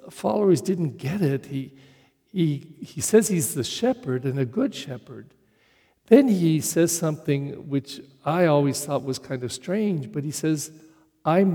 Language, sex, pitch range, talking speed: English, male, 140-170 Hz, 160 wpm